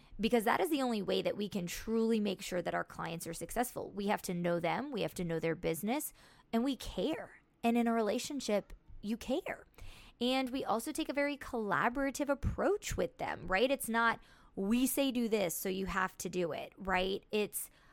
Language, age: English, 20-39